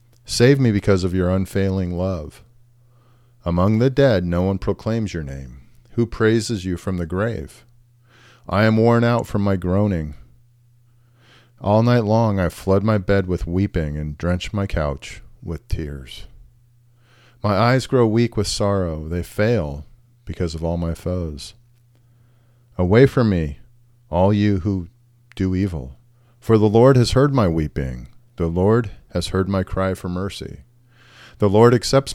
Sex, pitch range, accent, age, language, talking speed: male, 85-120 Hz, American, 40-59, English, 155 wpm